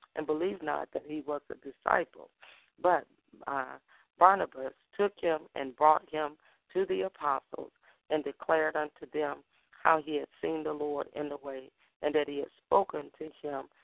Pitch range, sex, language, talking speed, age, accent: 140-160 Hz, female, English, 170 wpm, 40-59, American